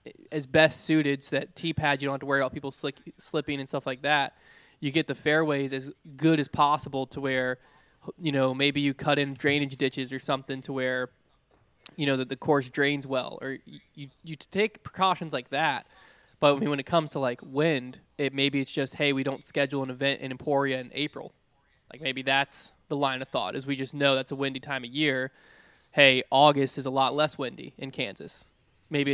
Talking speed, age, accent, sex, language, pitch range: 210 wpm, 20-39, American, male, English, 130-145 Hz